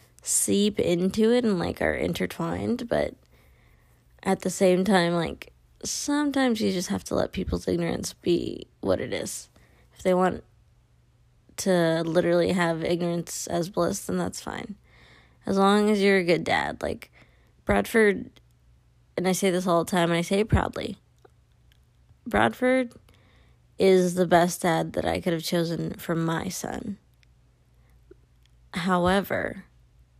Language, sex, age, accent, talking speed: English, female, 20-39, American, 140 wpm